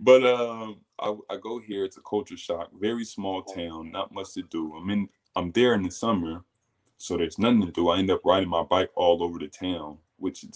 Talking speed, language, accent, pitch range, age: 225 wpm, English, American, 90-110 Hz, 20-39